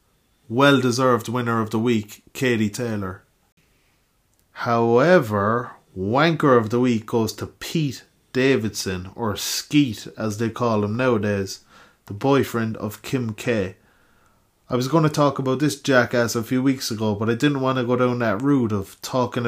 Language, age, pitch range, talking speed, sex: English, 20-39, 105-130 Hz, 155 wpm, male